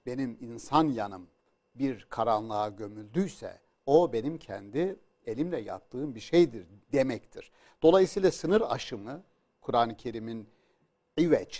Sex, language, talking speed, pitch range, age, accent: male, Turkish, 105 wpm, 120-180 Hz, 60-79, native